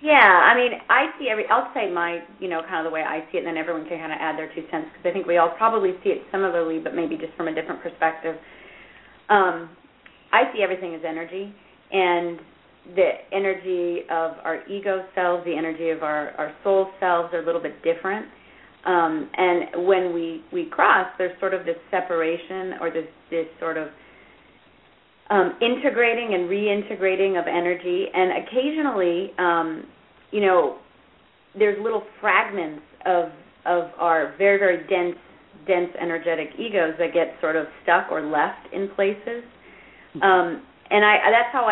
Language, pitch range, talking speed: English, 165-195 Hz, 175 wpm